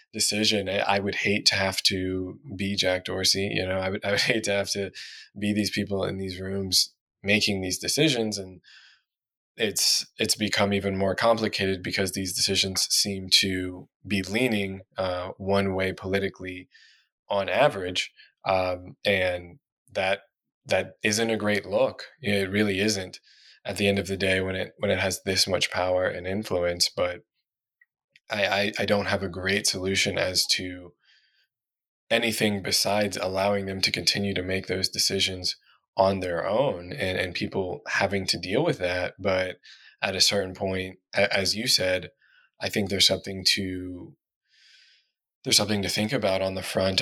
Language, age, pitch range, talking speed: English, 20-39, 95-100 Hz, 165 wpm